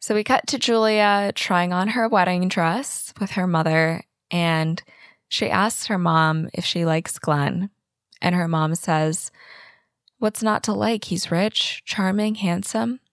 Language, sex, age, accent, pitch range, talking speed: English, female, 20-39, American, 170-205 Hz, 155 wpm